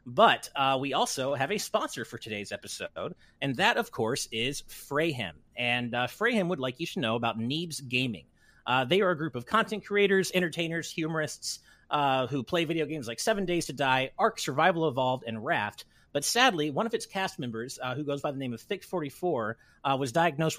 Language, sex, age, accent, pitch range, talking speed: English, male, 30-49, American, 115-155 Hz, 205 wpm